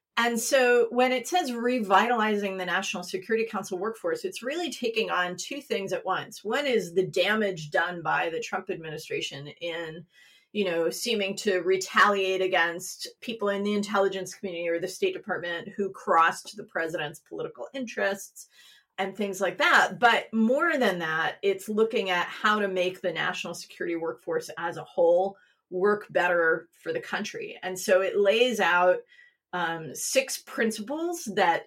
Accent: American